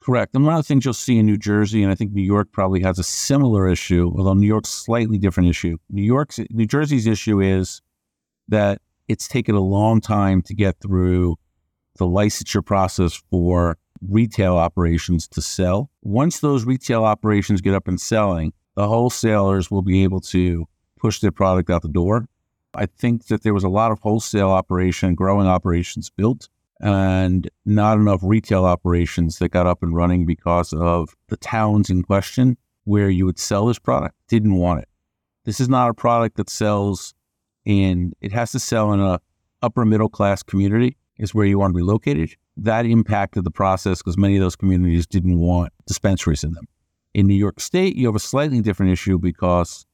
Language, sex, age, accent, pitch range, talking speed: English, male, 50-69, American, 90-110 Hz, 190 wpm